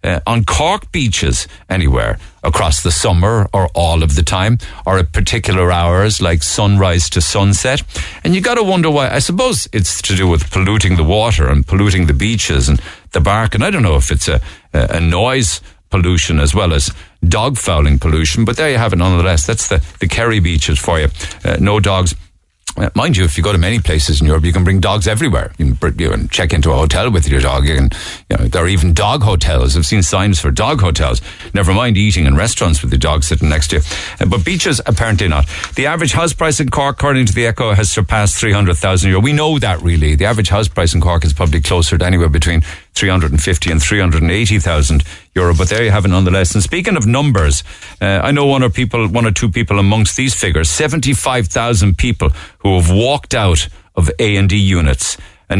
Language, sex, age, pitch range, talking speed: English, male, 50-69, 80-110 Hz, 225 wpm